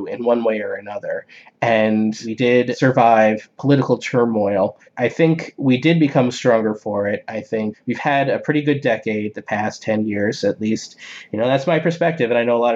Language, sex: English, male